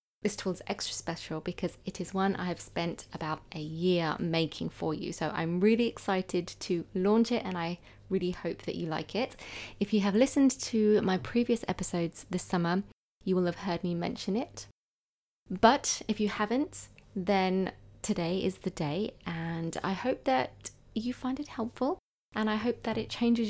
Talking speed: 185 wpm